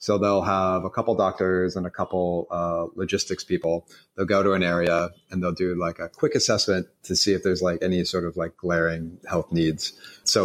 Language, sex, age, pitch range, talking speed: English, male, 30-49, 85-95 Hz, 215 wpm